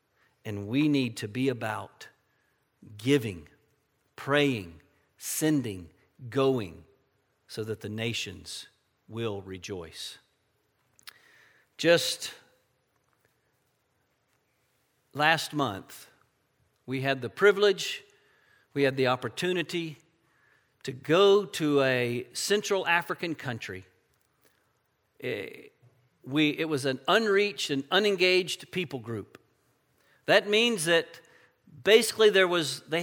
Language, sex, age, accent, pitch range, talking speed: English, male, 50-69, American, 130-185 Hz, 90 wpm